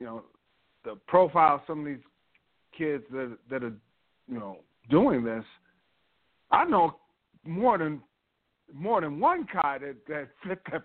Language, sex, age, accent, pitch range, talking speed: English, male, 40-59, American, 115-165 Hz, 155 wpm